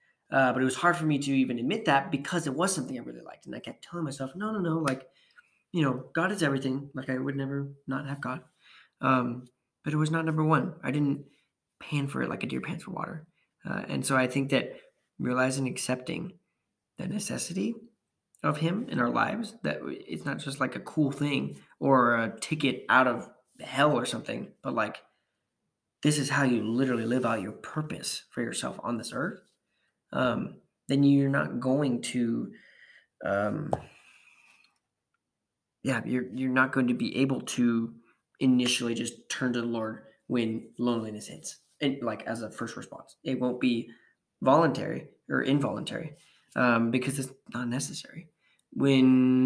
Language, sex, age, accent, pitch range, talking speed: English, male, 20-39, American, 125-150 Hz, 180 wpm